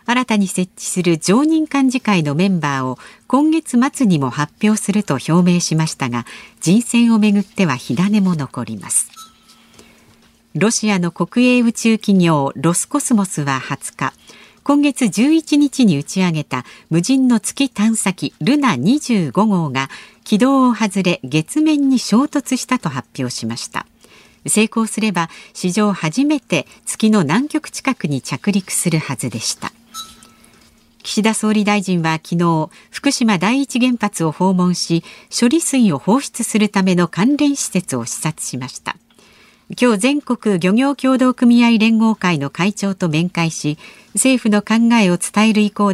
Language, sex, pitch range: Japanese, female, 170-245 Hz